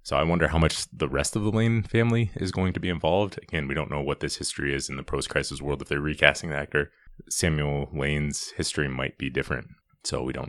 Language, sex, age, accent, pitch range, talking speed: English, male, 20-39, American, 70-80 Hz, 240 wpm